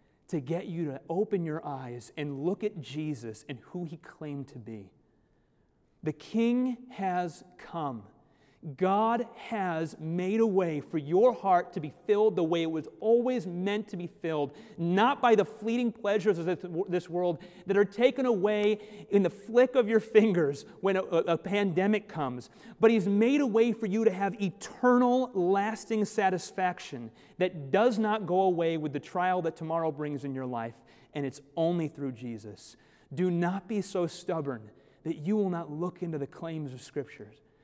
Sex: male